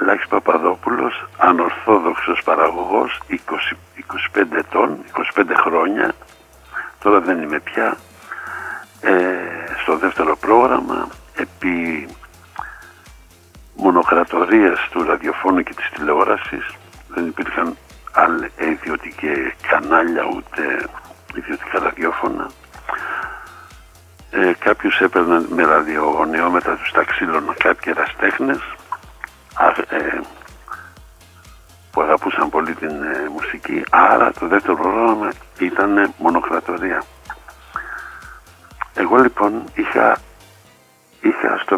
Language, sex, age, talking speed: Greek, male, 60-79, 80 wpm